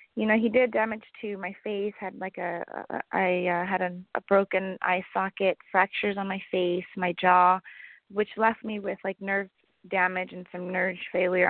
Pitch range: 180-215 Hz